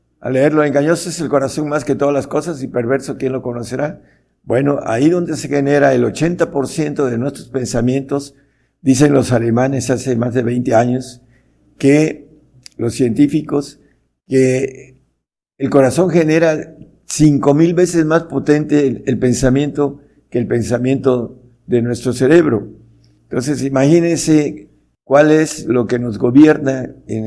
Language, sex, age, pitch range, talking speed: Spanish, male, 60-79, 120-145 Hz, 140 wpm